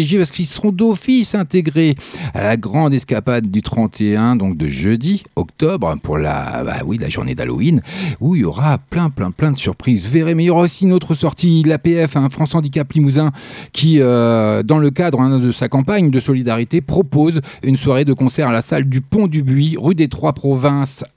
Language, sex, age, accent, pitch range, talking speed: French, male, 40-59, French, 120-160 Hz, 205 wpm